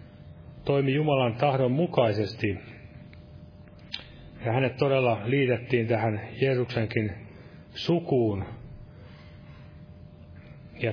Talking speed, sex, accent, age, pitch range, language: 65 wpm, male, native, 30-49, 105-130 Hz, Finnish